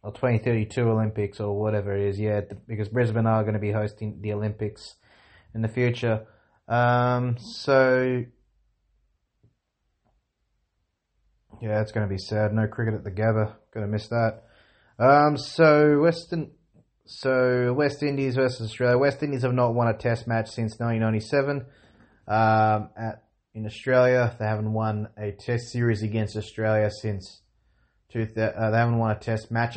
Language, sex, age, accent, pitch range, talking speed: English, male, 20-39, Australian, 105-115 Hz, 155 wpm